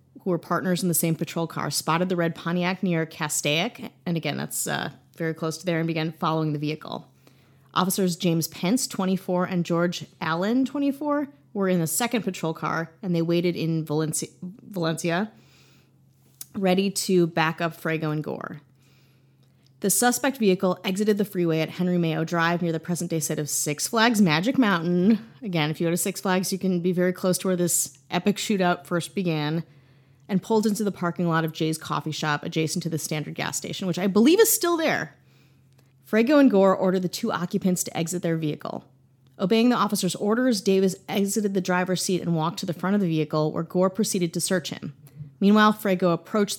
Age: 30-49